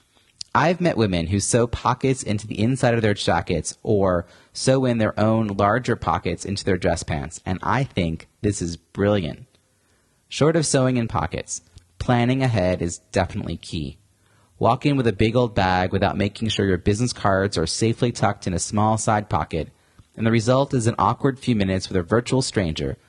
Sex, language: male, English